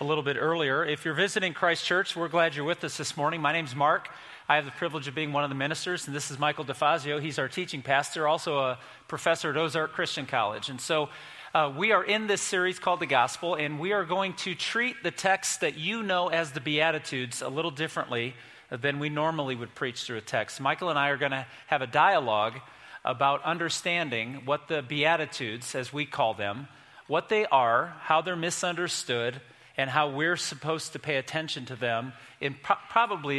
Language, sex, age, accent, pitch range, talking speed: English, male, 40-59, American, 135-170 Hz, 210 wpm